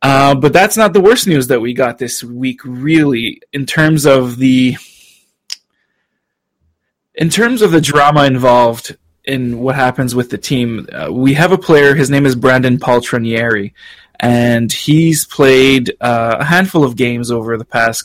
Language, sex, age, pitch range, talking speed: English, male, 20-39, 120-145 Hz, 165 wpm